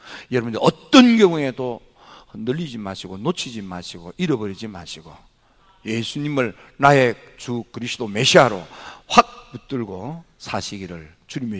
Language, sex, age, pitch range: Korean, male, 50-69, 100-140 Hz